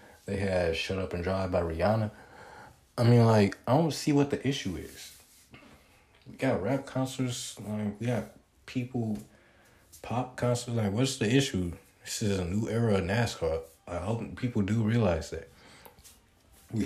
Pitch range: 95-120 Hz